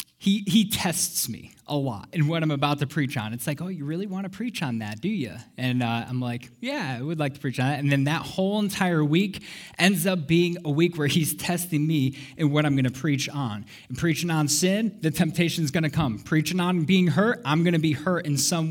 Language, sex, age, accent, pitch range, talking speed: English, male, 20-39, American, 130-165 Hz, 255 wpm